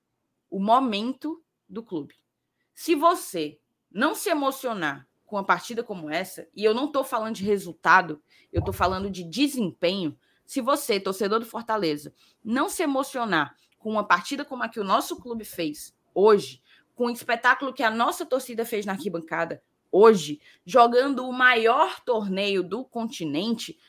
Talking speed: 155 wpm